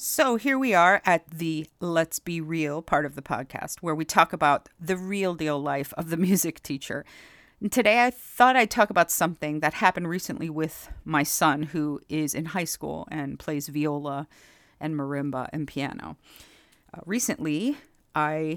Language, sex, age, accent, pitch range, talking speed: English, female, 40-59, American, 150-180 Hz, 170 wpm